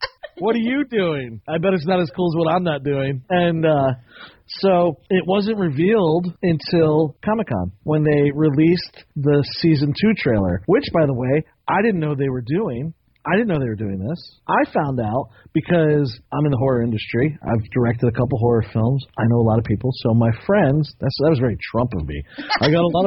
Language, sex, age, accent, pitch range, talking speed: English, male, 40-59, American, 135-190 Hz, 215 wpm